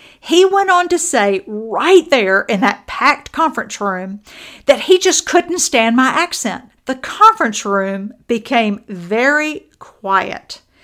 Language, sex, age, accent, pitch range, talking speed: English, female, 50-69, American, 215-315 Hz, 140 wpm